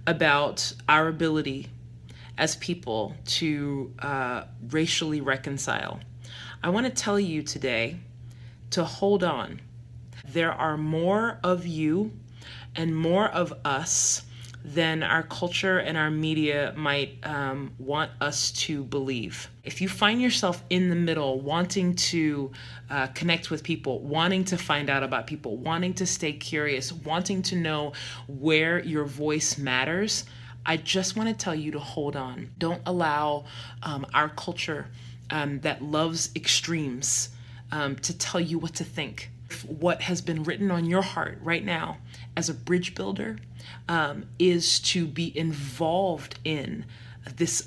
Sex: female